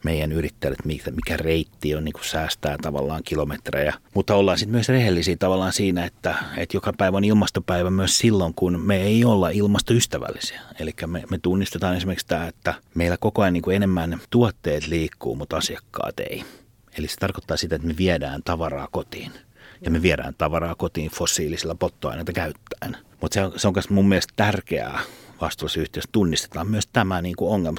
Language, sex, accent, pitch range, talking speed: Finnish, male, native, 80-95 Hz, 165 wpm